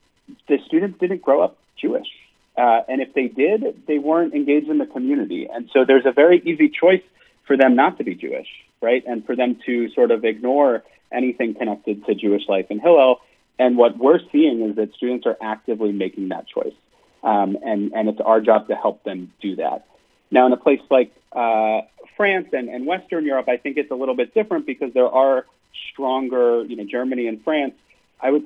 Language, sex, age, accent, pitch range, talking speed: French, male, 30-49, American, 110-145 Hz, 205 wpm